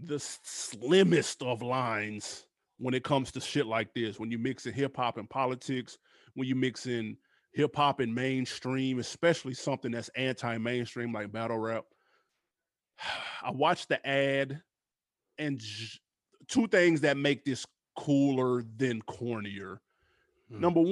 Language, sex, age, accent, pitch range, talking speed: English, male, 20-39, American, 125-160 Hz, 140 wpm